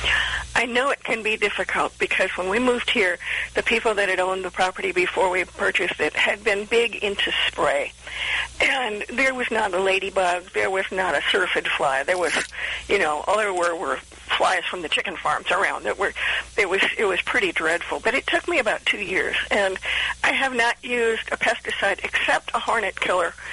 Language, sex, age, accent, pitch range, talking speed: English, female, 50-69, American, 185-240 Hz, 200 wpm